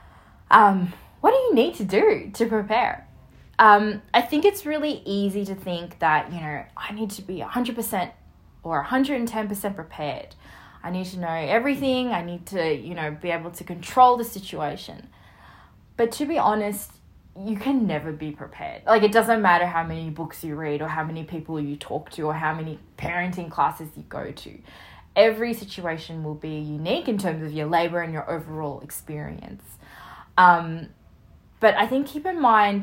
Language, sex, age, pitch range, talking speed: English, female, 20-39, 155-225 Hz, 180 wpm